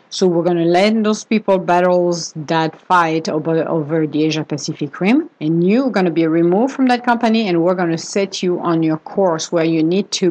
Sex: female